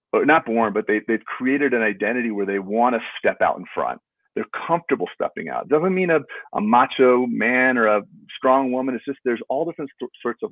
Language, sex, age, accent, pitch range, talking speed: English, male, 40-59, American, 110-135 Hz, 215 wpm